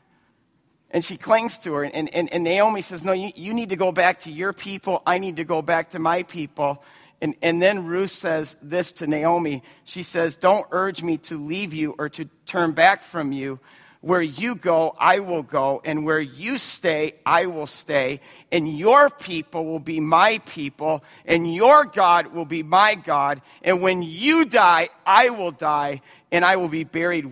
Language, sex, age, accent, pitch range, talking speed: English, male, 50-69, American, 150-185 Hz, 195 wpm